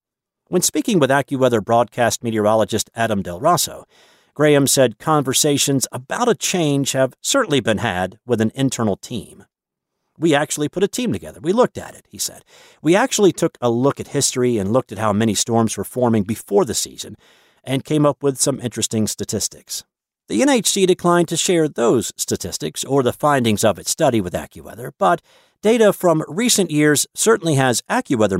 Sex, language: male, English